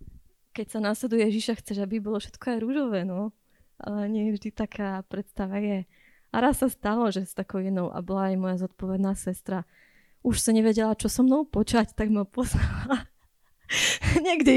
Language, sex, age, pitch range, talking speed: Slovak, female, 20-39, 195-240 Hz, 175 wpm